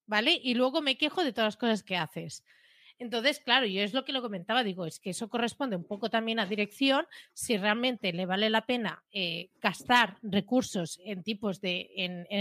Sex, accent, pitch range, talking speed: female, Spanish, 195-245 Hz, 190 wpm